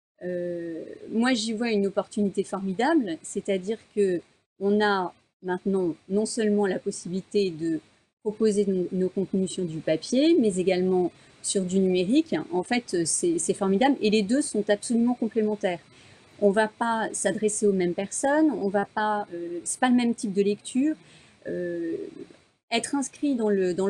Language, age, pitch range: French, 30-49, 185-235 Hz